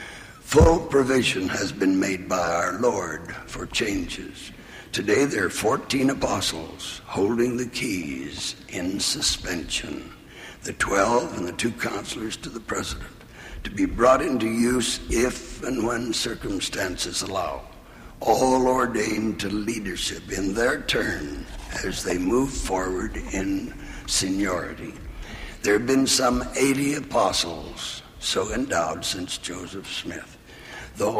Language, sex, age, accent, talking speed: English, male, 60-79, American, 125 wpm